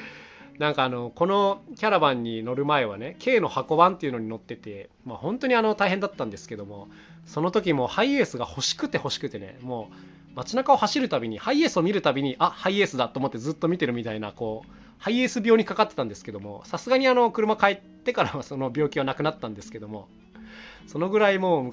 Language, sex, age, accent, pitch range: Japanese, male, 20-39, native, 115-175 Hz